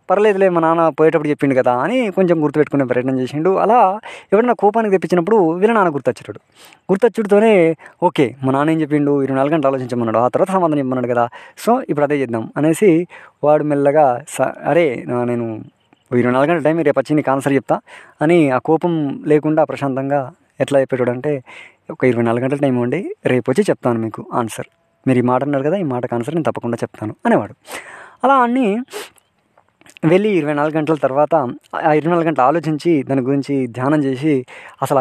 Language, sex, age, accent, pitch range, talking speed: Telugu, female, 20-39, native, 125-160 Hz, 160 wpm